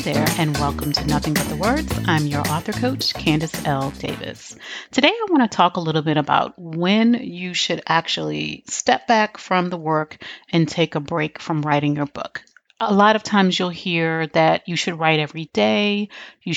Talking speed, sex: 195 wpm, female